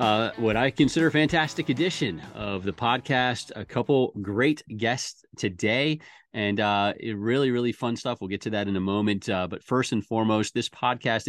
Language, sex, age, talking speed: English, male, 30-49, 185 wpm